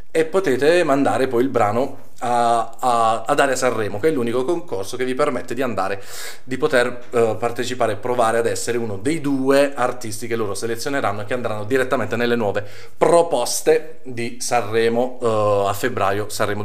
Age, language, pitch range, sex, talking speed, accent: 30-49, Italian, 115-145 Hz, male, 170 wpm, native